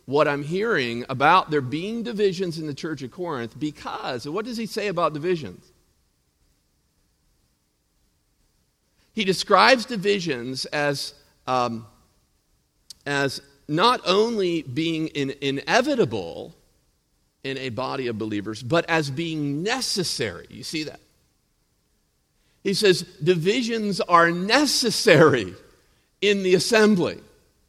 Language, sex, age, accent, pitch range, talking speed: English, male, 50-69, American, 140-195 Hz, 105 wpm